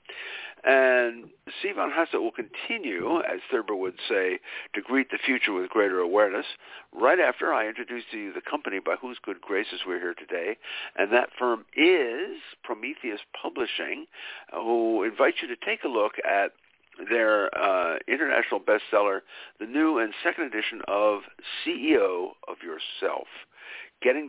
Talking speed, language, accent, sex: 145 wpm, English, American, male